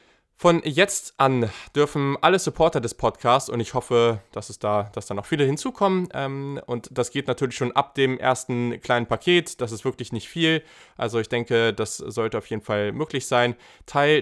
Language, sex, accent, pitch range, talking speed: German, male, German, 115-150 Hz, 195 wpm